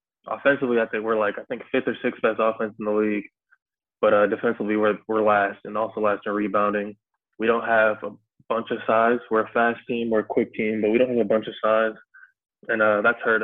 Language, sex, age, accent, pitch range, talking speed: English, male, 20-39, American, 105-115 Hz, 235 wpm